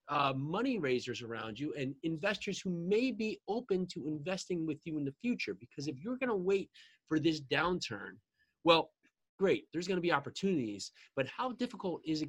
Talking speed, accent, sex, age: 190 wpm, American, male, 20-39